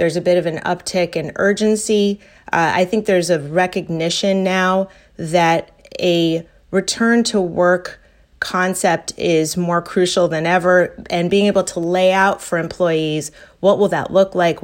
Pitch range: 165-190 Hz